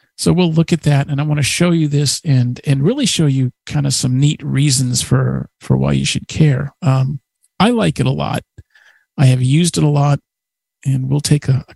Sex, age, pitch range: male, 50-69, 130-155 Hz